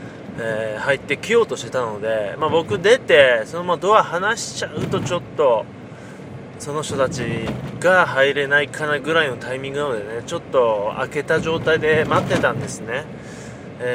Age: 20-39